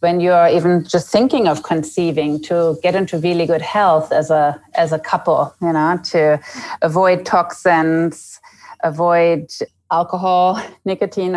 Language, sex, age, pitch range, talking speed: English, female, 30-49, 160-190 Hz, 135 wpm